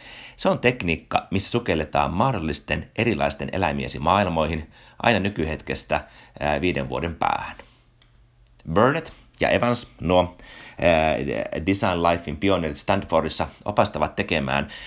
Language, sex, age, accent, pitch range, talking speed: Finnish, male, 30-49, native, 80-120 Hz, 95 wpm